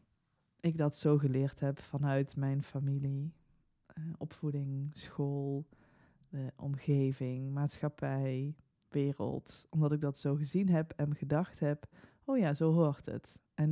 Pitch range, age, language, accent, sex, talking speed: 140-170 Hz, 20-39, Dutch, Dutch, female, 125 wpm